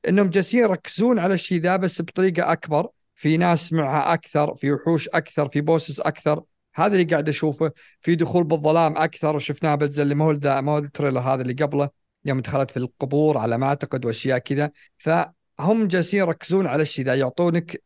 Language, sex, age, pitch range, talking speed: Arabic, male, 50-69, 135-170 Hz, 180 wpm